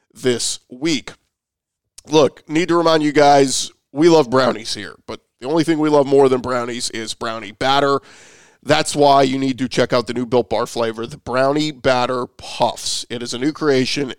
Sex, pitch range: male, 125-150 Hz